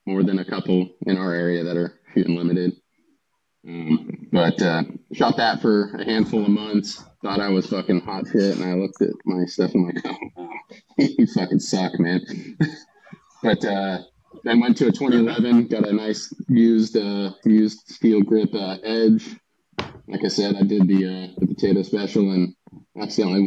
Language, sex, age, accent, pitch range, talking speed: English, male, 20-39, American, 90-105 Hz, 180 wpm